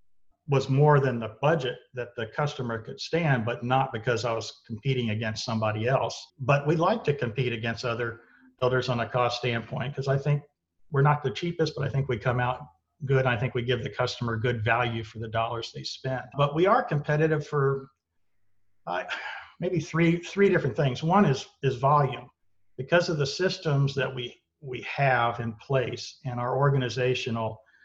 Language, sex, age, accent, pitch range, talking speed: English, male, 50-69, American, 120-145 Hz, 185 wpm